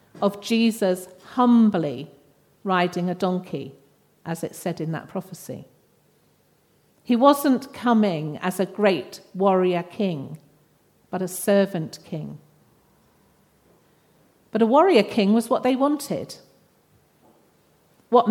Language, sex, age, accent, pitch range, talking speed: English, female, 50-69, British, 175-220 Hz, 110 wpm